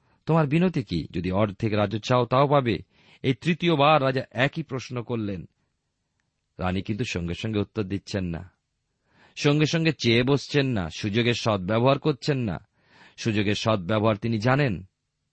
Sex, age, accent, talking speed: male, 40-59, native, 55 wpm